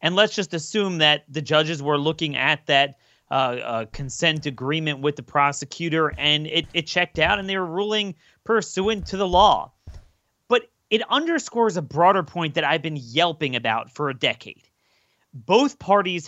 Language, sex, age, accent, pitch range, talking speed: English, male, 30-49, American, 150-220 Hz, 175 wpm